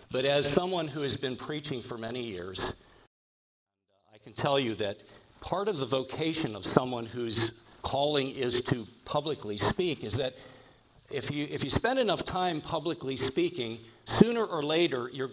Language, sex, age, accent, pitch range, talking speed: English, male, 50-69, American, 115-155 Hz, 160 wpm